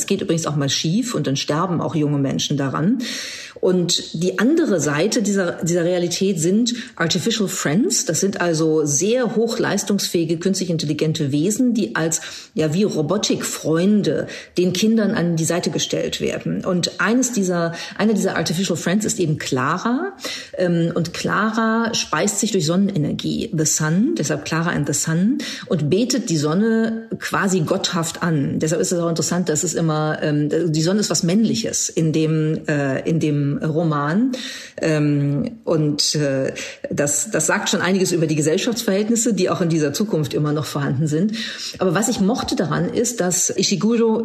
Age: 40-59